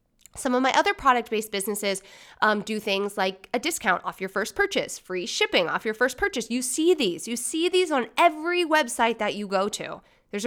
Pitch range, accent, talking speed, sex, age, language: 205-300 Hz, American, 205 wpm, female, 20-39, English